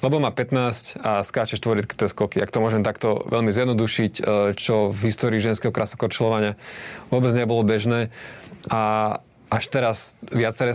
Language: Slovak